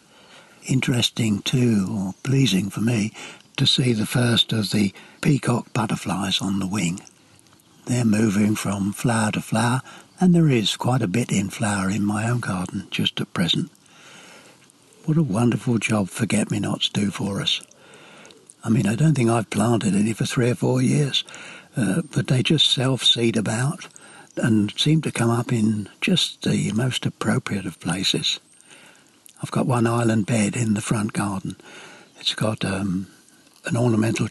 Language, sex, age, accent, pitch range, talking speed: English, male, 60-79, British, 105-130 Hz, 160 wpm